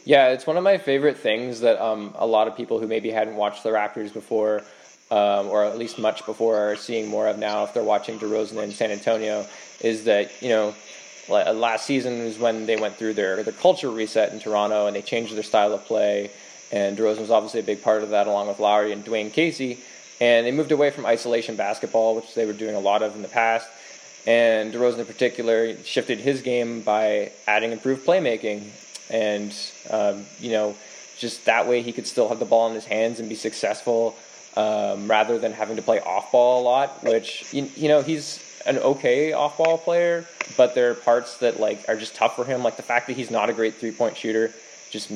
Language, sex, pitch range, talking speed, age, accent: English, male, 105-125 Hz, 220 wpm, 20-39, American